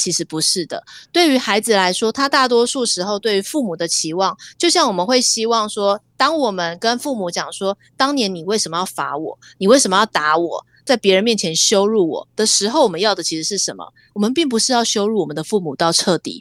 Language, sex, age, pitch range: Chinese, female, 30-49, 170-230 Hz